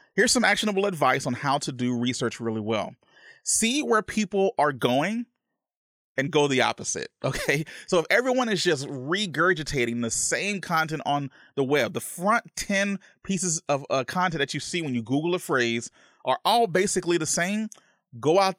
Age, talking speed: 30-49, 180 wpm